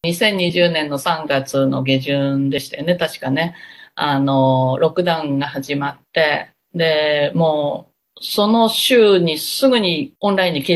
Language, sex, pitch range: Japanese, female, 140-195 Hz